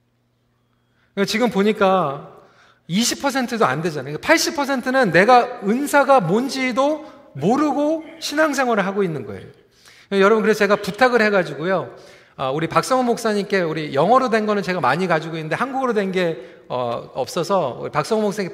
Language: Korean